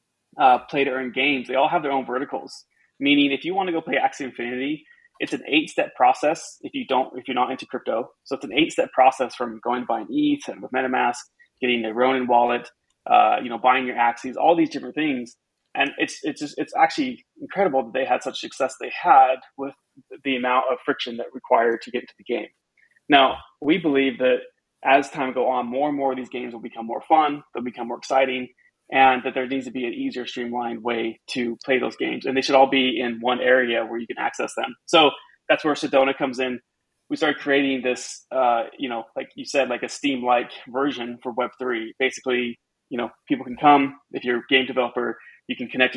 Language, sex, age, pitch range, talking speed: English, male, 20-39, 120-140 Hz, 225 wpm